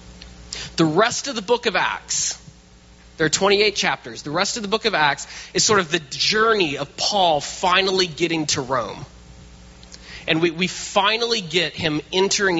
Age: 20-39